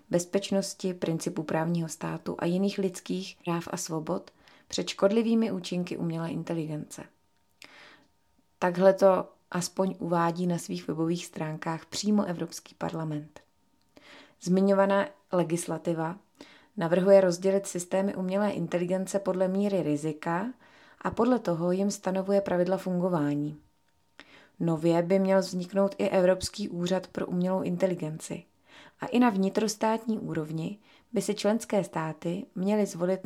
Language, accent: English, Czech